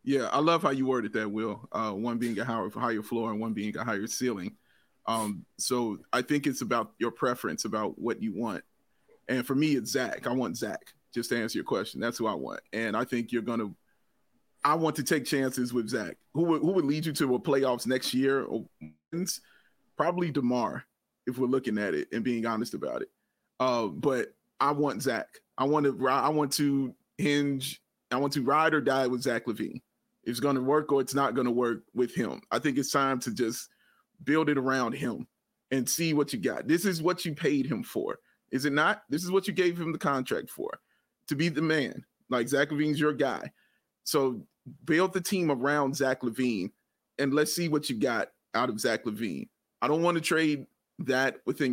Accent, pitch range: American, 125-155 Hz